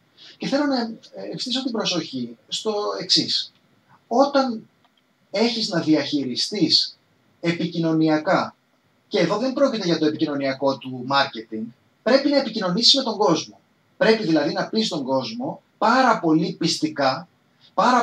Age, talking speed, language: 30-49, 125 wpm, Greek